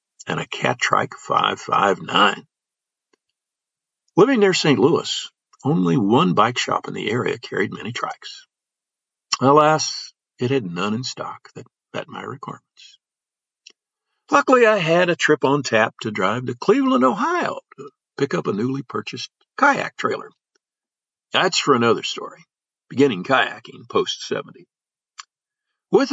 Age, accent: 60-79, American